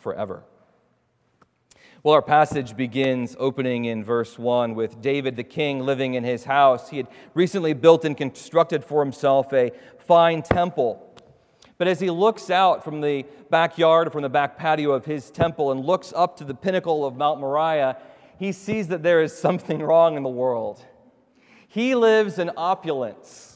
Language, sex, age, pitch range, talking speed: English, male, 40-59, 145-200 Hz, 170 wpm